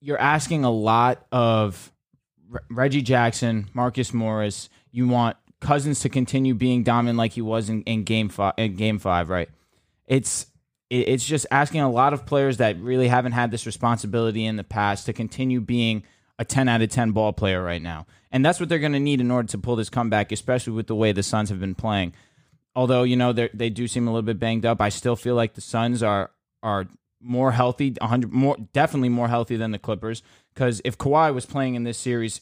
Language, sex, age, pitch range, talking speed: English, male, 20-39, 110-130 Hz, 215 wpm